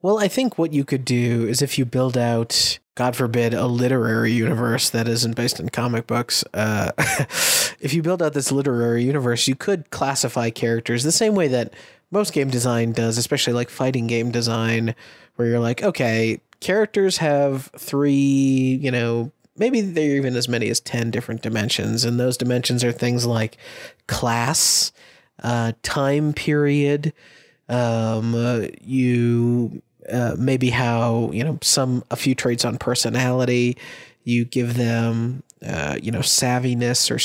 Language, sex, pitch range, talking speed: English, male, 115-130 Hz, 160 wpm